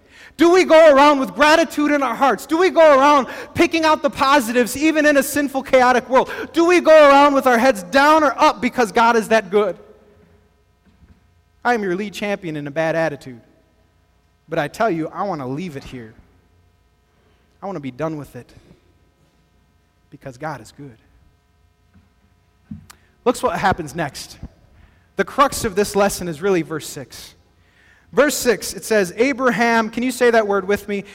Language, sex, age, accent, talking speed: English, male, 30-49, American, 180 wpm